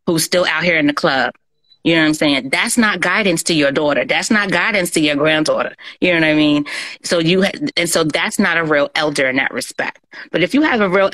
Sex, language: female, English